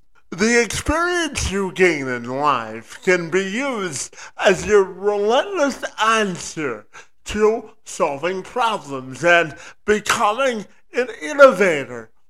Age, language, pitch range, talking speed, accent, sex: 50-69, English, 140-220 Hz, 100 wpm, American, male